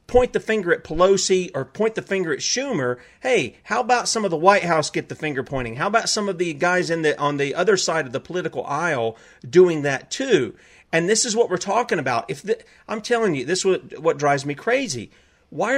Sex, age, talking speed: male, 40-59, 235 wpm